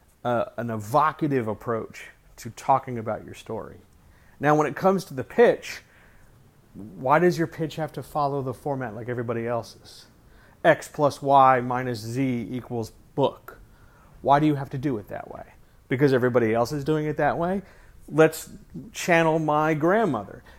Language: English